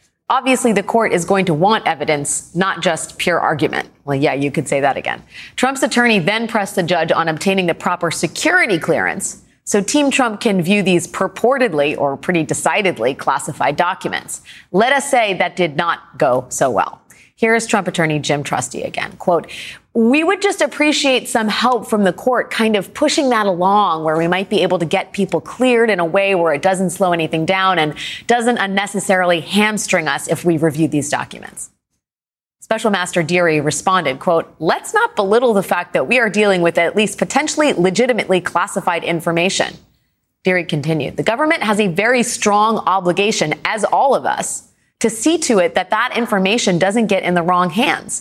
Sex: female